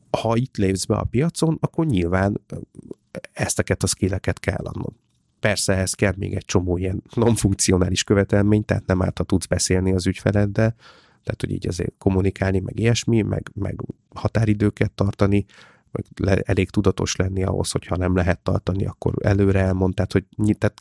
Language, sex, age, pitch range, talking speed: Hungarian, male, 30-49, 95-110 Hz, 160 wpm